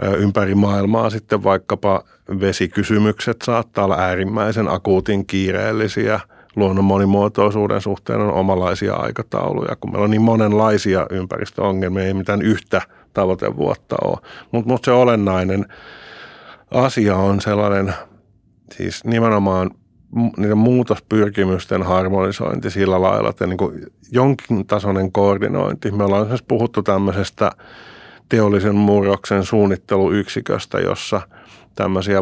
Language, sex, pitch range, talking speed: Finnish, male, 95-110 Hz, 105 wpm